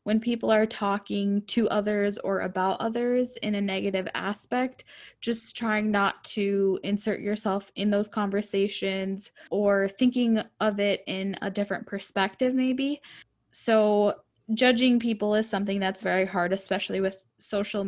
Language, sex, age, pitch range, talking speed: English, female, 10-29, 190-215 Hz, 140 wpm